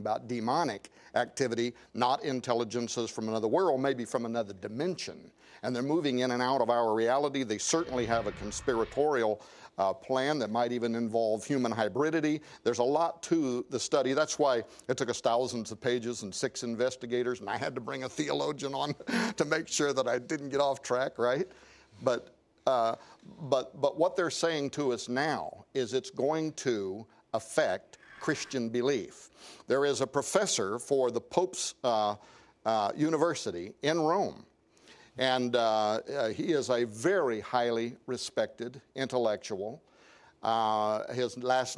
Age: 50-69